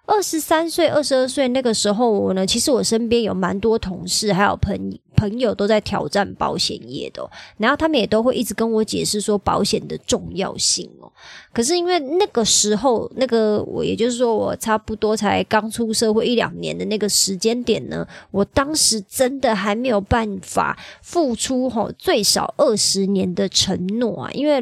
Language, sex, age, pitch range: Chinese, male, 20-39, 200-245 Hz